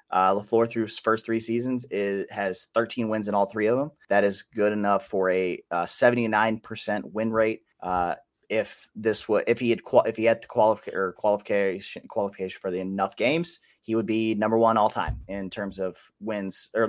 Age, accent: 30-49, American